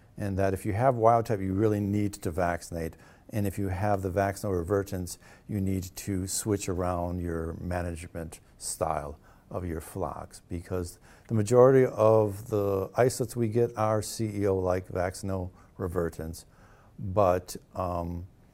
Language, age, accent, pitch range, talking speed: English, 50-69, American, 95-120 Hz, 145 wpm